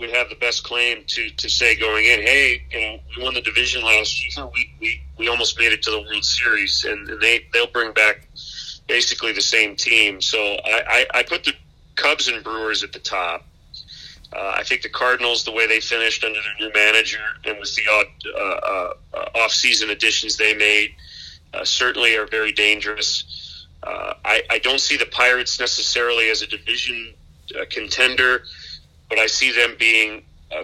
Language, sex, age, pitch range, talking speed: English, male, 40-59, 100-120 Hz, 190 wpm